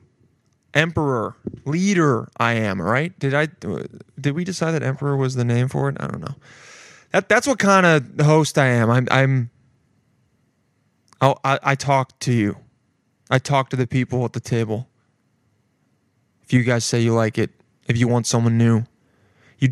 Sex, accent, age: male, American, 20-39